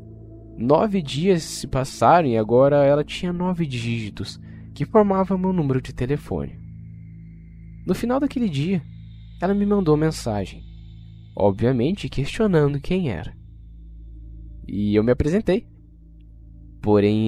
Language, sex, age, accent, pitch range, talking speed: Portuguese, male, 10-29, Brazilian, 100-145 Hz, 115 wpm